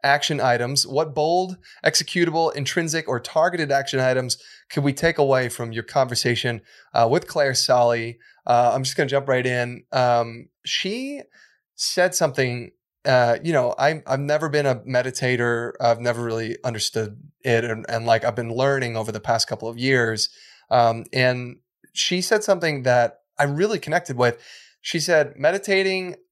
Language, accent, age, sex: English, American, 20-39, male